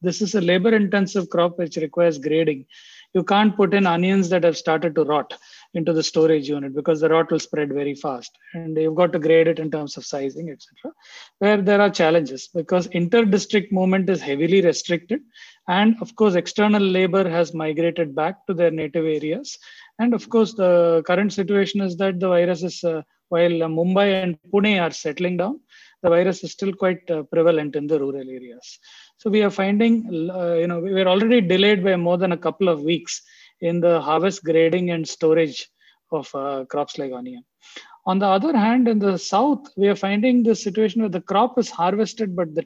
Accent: Indian